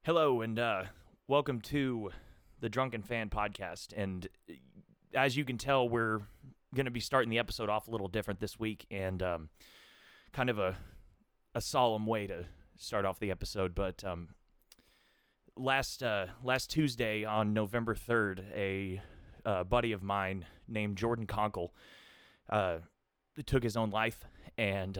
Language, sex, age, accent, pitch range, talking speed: English, male, 30-49, American, 95-120 Hz, 150 wpm